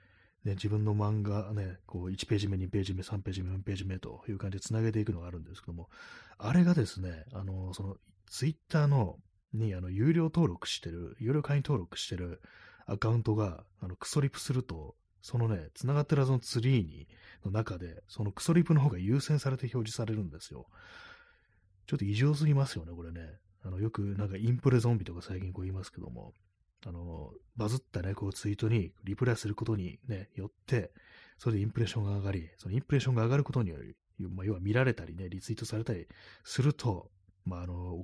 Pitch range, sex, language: 95-115 Hz, male, Japanese